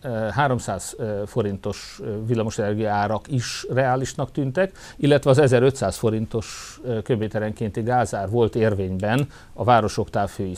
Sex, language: male, Hungarian